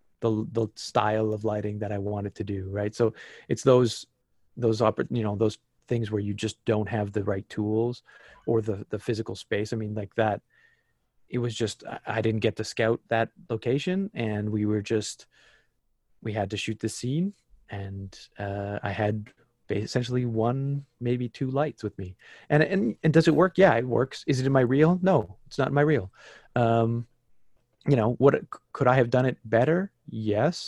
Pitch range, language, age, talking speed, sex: 105-125 Hz, English, 30-49, 190 wpm, male